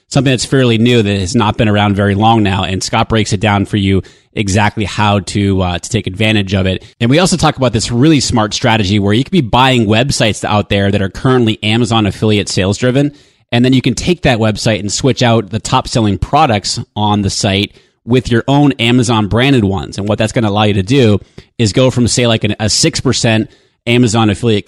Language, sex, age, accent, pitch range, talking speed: English, male, 30-49, American, 105-120 Hz, 230 wpm